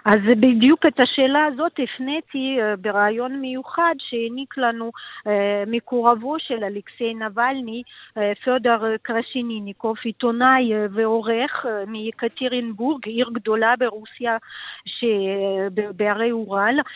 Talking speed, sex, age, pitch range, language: 90 wpm, female, 40-59, 220-275 Hz, Hebrew